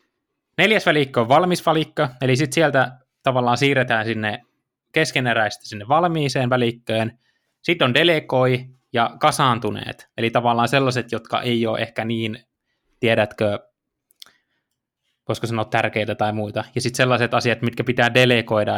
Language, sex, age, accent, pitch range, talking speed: Finnish, male, 20-39, native, 110-135 Hz, 130 wpm